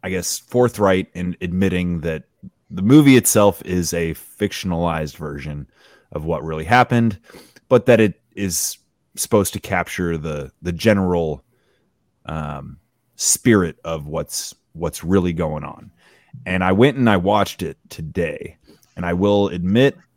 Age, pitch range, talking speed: 30-49, 85-110 Hz, 140 wpm